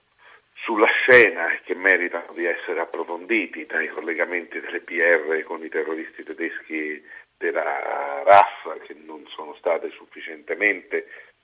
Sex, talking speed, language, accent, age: male, 115 wpm, Italian, native, 50-69